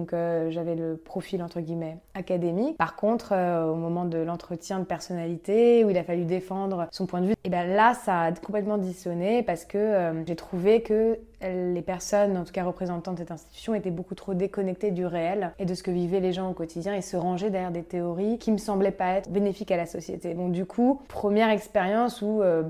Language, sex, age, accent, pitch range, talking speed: French, female, 20-39, French, 175-205 Hz, 225 wpm